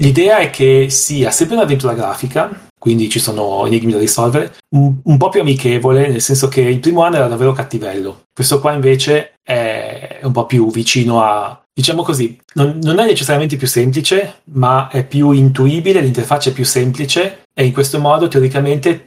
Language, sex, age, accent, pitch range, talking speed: Italian, male, 30-49, native, 115-140 Hz, 185 wpm